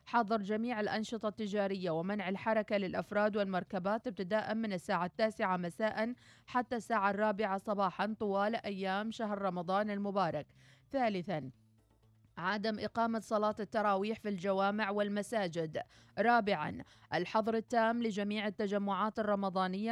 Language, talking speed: Arabic, 110 wpm